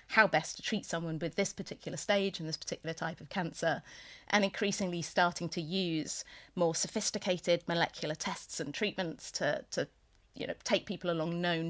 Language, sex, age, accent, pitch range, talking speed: English, female, 30-49, British, 165-205 Hz, 175 wpm